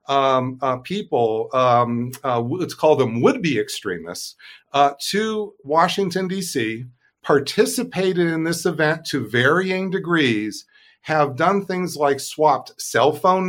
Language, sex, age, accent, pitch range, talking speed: English, male, 50-69, American, 130-180 Hz, 125 wpm